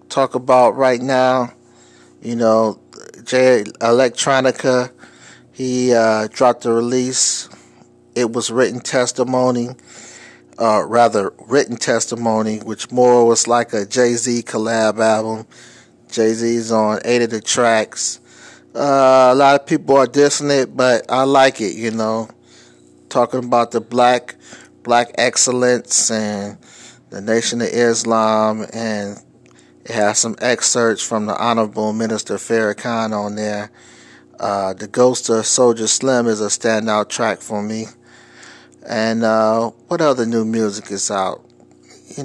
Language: English